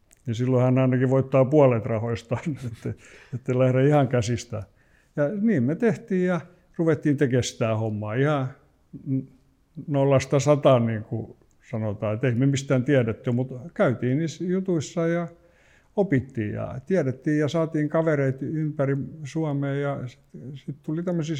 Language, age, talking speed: Finnish, 60-79, 135 wpm